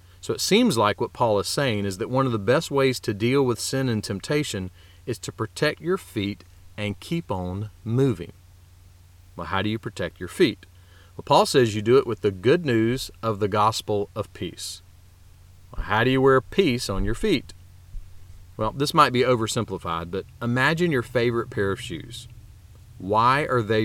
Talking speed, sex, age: 190 wpm, male, 40-59